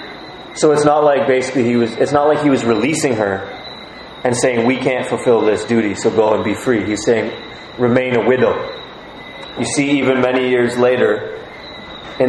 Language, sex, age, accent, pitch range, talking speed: English, male, 20-39, American, 115-135 Hz, 185 wpm